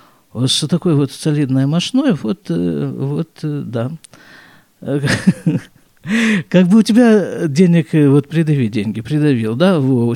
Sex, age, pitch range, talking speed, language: male, 50-69, 140-205 Hz, 120 wpm, Russian